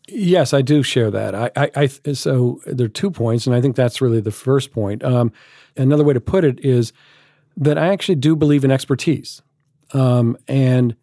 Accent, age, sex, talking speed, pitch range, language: American, 50-69, male, 200 wpm, 120-145 Hz, English